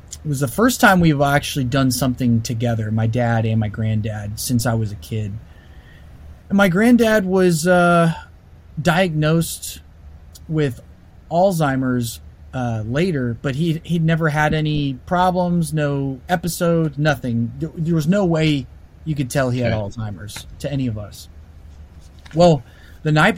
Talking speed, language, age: 150 wpm, English, 30-49